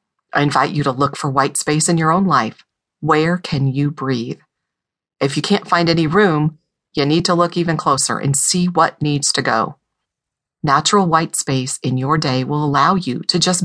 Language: English